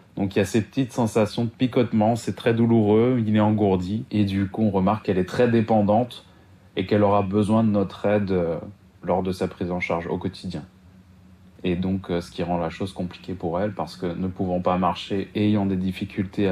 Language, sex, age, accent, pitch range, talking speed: French, male, 20-39, French, 90-105 Hz, 210 wpm